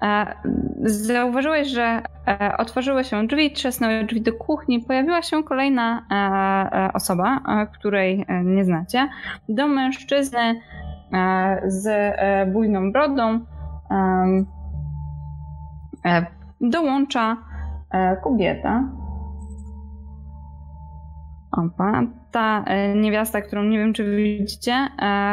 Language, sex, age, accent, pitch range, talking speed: Polish, female, 20-39, native, 180-230 Hz, 75 wpm